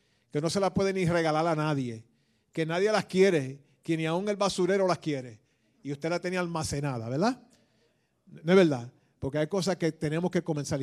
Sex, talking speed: male, 200 wpm